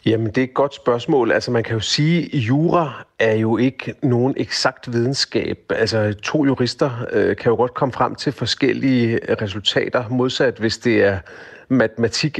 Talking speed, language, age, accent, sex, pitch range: 170 wpm, Danish, 40-59, native, male, 105-125 Hz